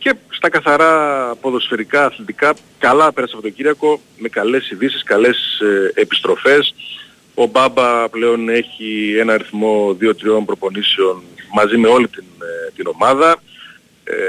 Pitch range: 110-160 Hz